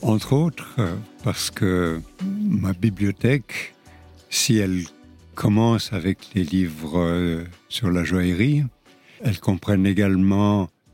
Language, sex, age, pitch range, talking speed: French, male, 60-79, 90-115 Hz, 100 wpm